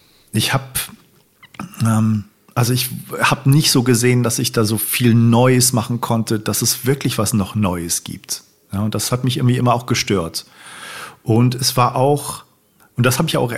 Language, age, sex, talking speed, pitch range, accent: German, 40-59, male, 185 wpm, 110-135 Hz, German